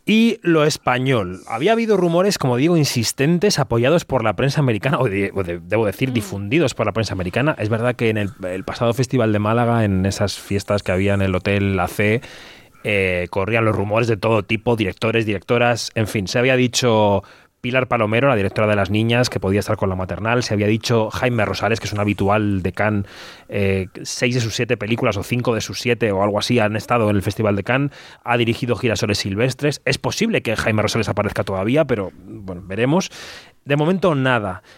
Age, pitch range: 30-49, 105-130 Hz